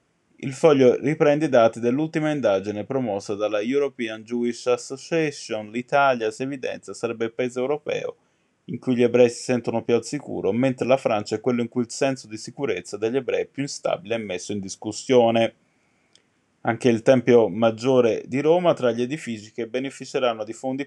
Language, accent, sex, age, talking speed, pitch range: Italian, native, male, 20-39, 175 wpm, 110-135 Hz